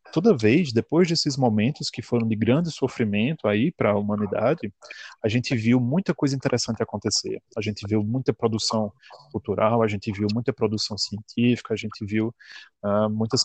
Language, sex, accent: Portuguese, male, Brazilian